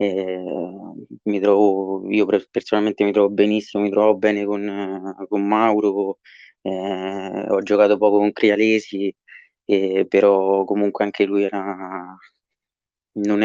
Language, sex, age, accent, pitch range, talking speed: Italian, male, 20-39, native, 100-105 Hz, 120 wpm